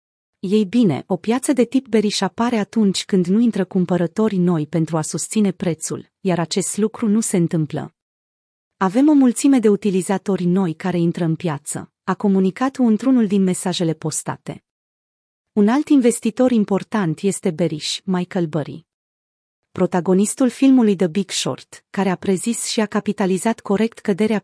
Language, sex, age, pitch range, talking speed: Romanian, female, 30-49, 170-220 Hz, 150 wpm